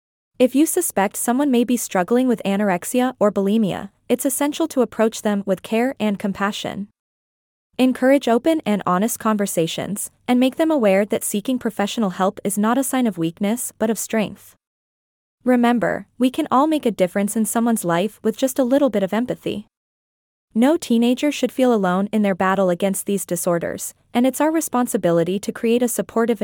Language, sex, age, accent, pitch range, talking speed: English, female, 20-39, American, 200-250 Hz, 175 wpm